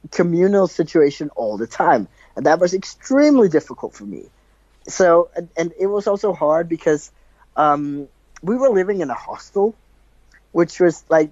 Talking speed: 160 wpm